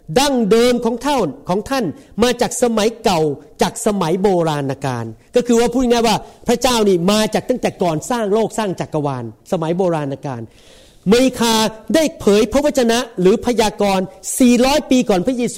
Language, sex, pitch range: Thai, male, 195-255 Hz